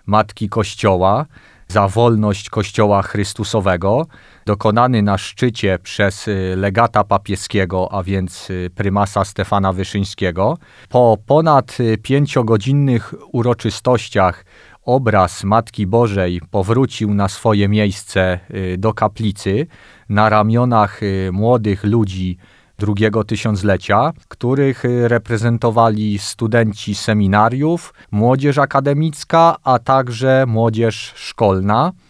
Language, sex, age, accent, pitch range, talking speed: Polish, male, 40-59, native, 100-120 Hz, 85 wpm